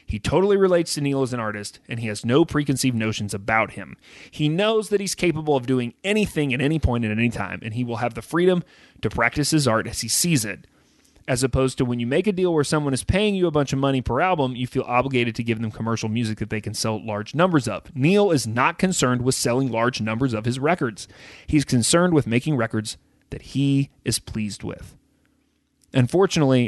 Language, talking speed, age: English, 225 wpm, 30-49